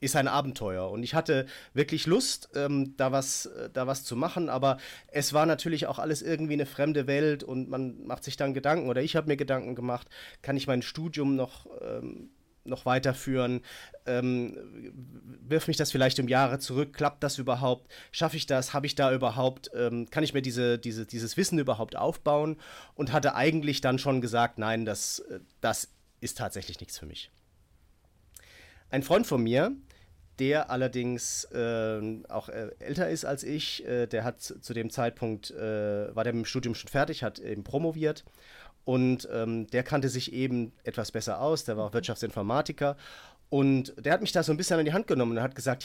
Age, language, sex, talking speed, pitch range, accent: 30-49, German, male, 185 wpm, 115-145 Hz, German